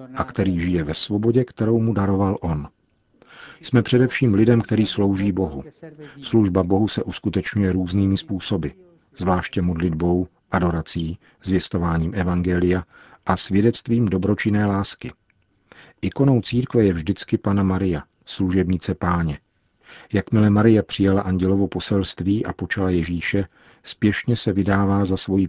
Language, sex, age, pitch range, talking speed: Czech, male, 40-59, 90-110 Hz, 120 wpm